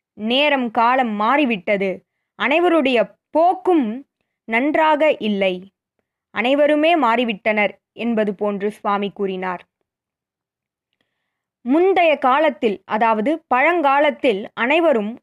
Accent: native